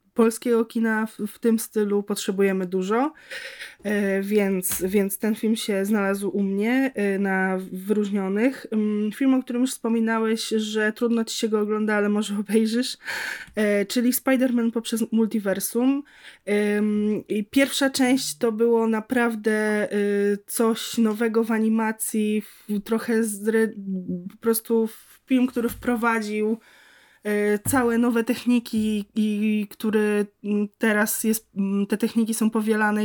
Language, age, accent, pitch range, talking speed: Polish, 20-39, native, 205-240 Hz, 120 wpm